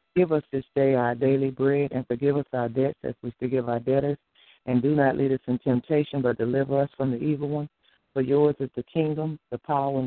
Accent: American